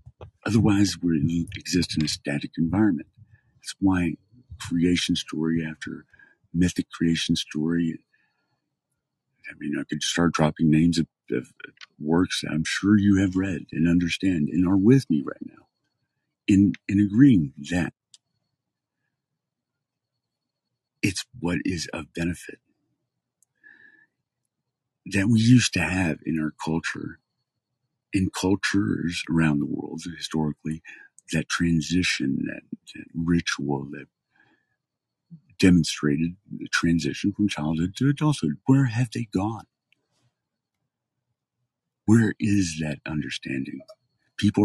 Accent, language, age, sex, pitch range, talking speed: American, English, 50-69, male, 80-125 Hz, 115 wpm